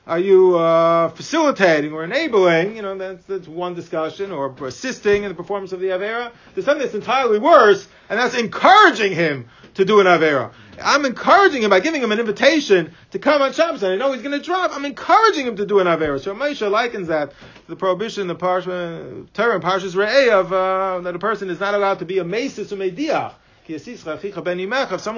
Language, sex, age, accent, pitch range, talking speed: English, male, 40-59, American, 165-220 Hz, 200 wpm